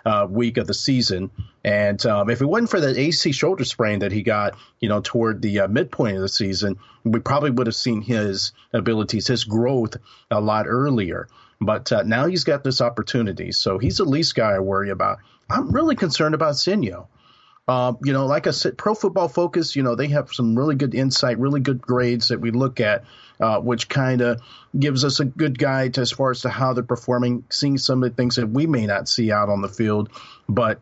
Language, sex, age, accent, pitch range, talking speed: English, male, 40-59, American, 110-135 Hz, 225 wpm